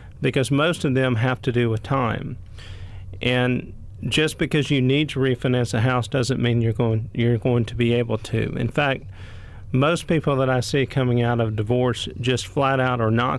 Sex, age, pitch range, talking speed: male, 40-59, 110-135 Hz, 195 wpm